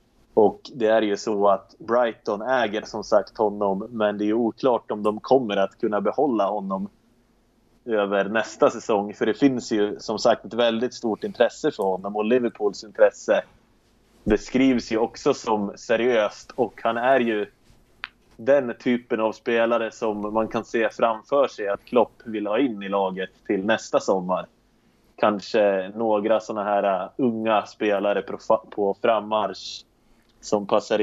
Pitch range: 100-115 Hz